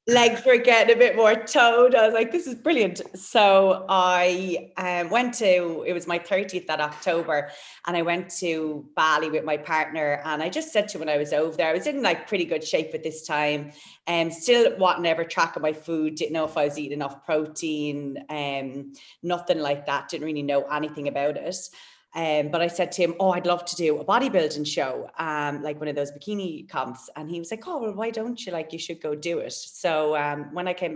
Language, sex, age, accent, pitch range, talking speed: English, female, 30-49, Irish, 150-190 Hz, 235 wpm